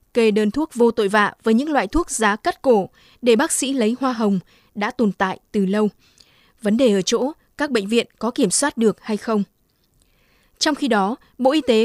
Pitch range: 210-255 Hz